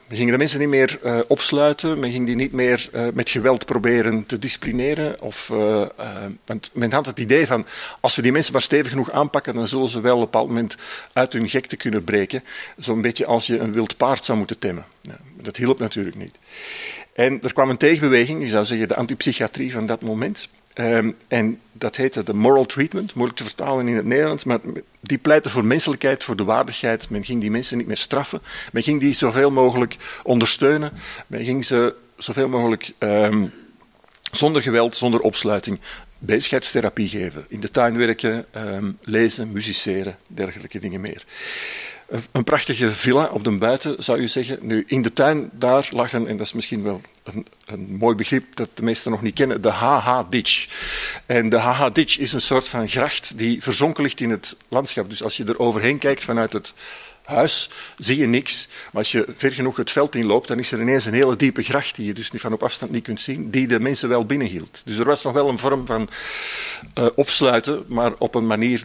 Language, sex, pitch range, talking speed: Dutch, male, 115-135 Hz, 205 wpm